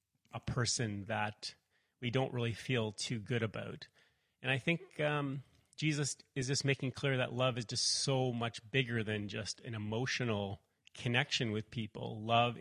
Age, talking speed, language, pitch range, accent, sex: 30-49, 160 wpm, English, 110-130 Hz, American, male